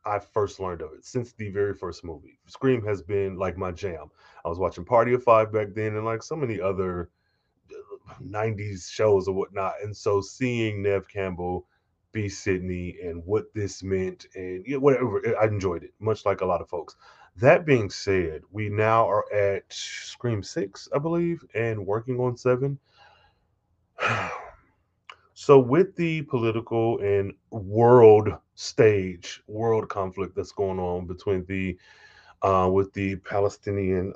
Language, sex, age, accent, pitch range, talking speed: English, male, 30-49, American, 95-115 Hz, 155 wpm